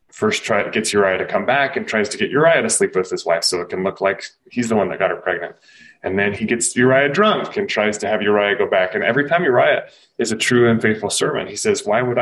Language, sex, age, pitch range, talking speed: English, male, 20-39, 95-120 Hz, 275 wpm